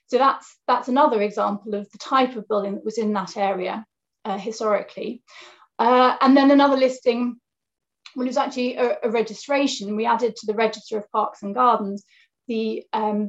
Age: 30-49